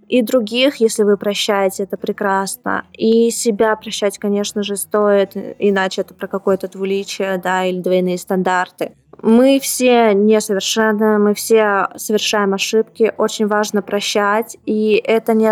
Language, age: Russian, 20-39